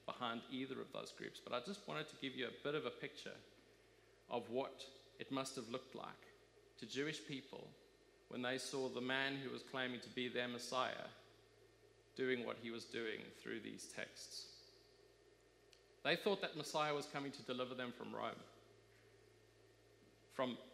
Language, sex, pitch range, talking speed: English, male, 130-170 Hz, 170 wpm